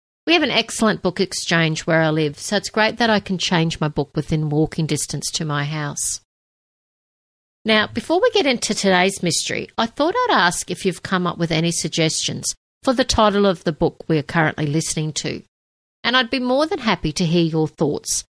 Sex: female